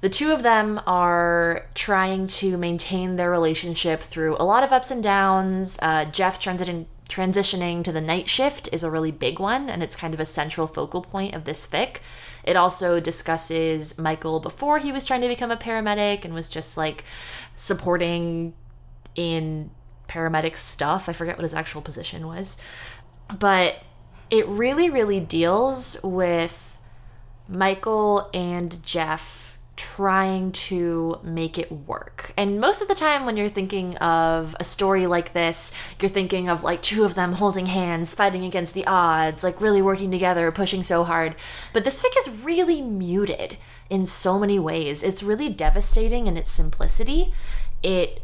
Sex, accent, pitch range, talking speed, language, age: female, American, 165-195 Hz, 165 wpm, English, 20-39